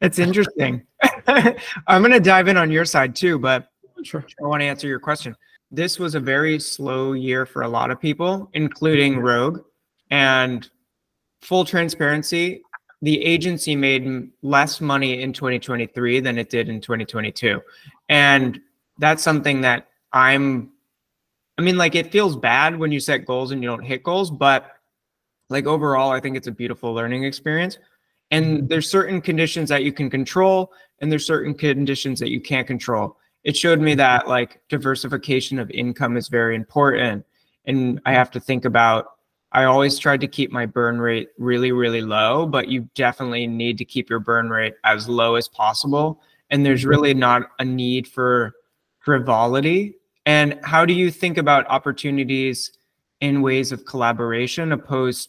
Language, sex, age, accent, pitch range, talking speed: English, male, 30-49, American, 125-155 Hz, 165 wpm